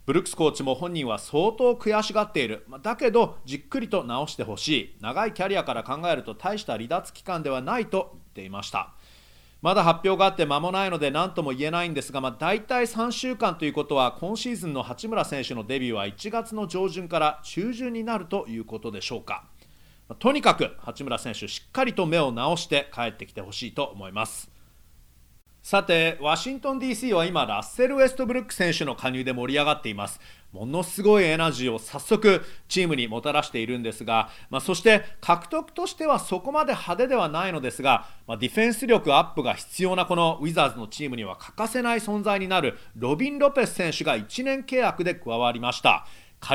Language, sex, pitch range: Japanese, male, 130-215 Hz